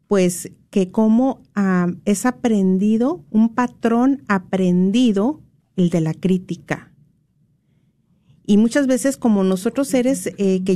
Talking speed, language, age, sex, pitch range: 115 wpm, Spanish, 40-59, female, 190-245 Hz